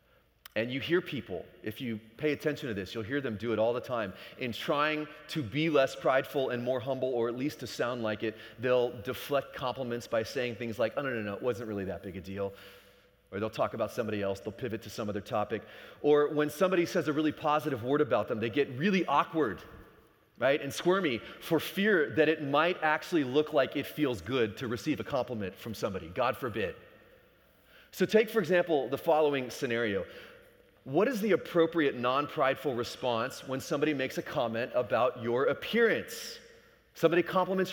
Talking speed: 195 wpm